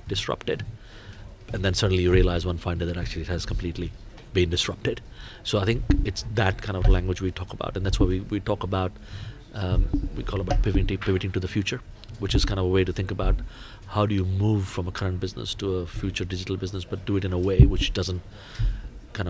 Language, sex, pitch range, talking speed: English, male, 95-110 Hz, 225 wpm